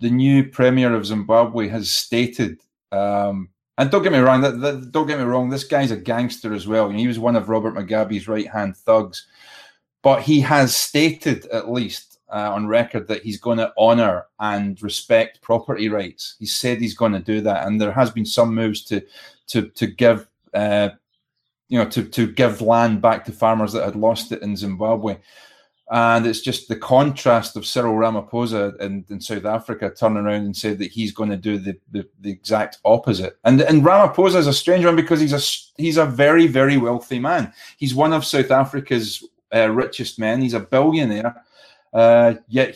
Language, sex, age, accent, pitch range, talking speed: English, male, 30-49, British, 110-130 Hz, 200 wpm